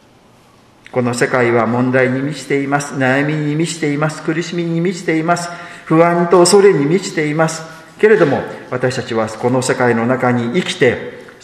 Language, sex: Japanese, male